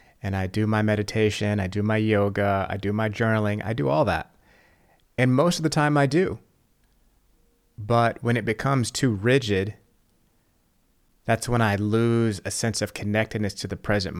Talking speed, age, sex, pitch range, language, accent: 175 wpm, 30-49, male, 100-120 Hz, English, American